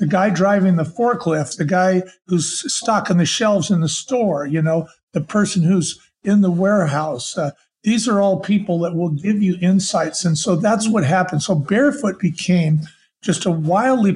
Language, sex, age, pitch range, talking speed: English, male, 50-69, 165-195 Hz, 185 wpm